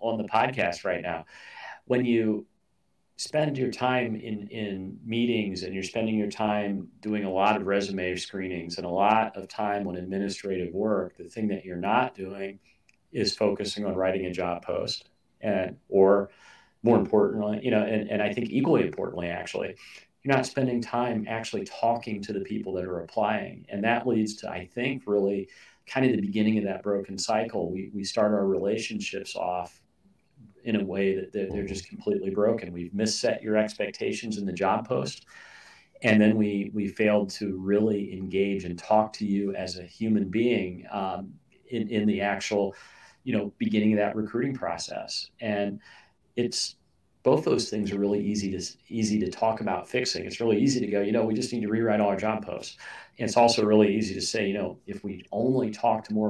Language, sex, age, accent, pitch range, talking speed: English, male, 40-59, American, 95-110 Hz, 190 wpm